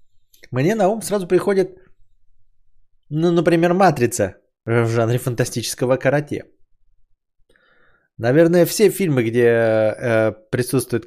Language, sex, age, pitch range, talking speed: Bulgarian, male, 20-39, 105-140 Hz, 100 wpm